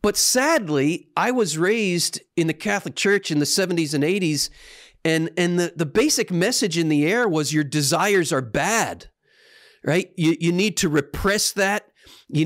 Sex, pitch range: male, 155-205 Hz